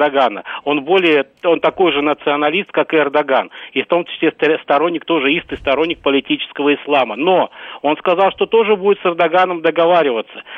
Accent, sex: native, male